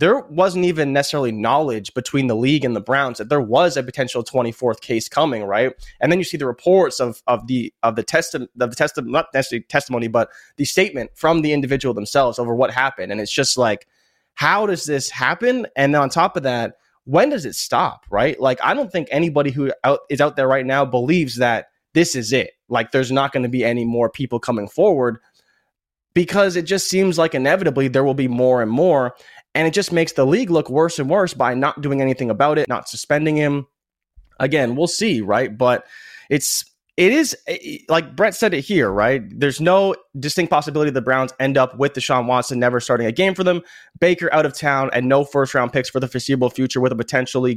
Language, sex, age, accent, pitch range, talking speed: English, male, 20-39, American, 125-165 Hz, 220 wpm